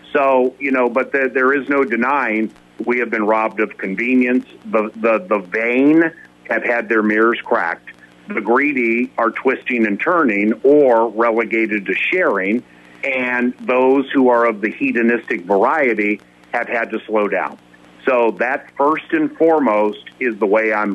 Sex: male